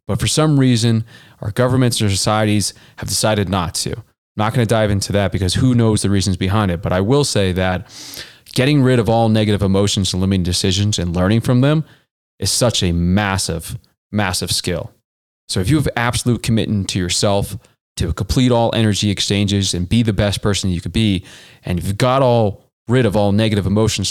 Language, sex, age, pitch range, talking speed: English, male, 20-39, 100-125 Hz, 200 wpm